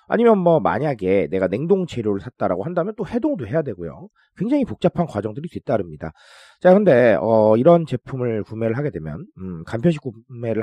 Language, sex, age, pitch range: Korean, male, 30-49, 110-180 Hz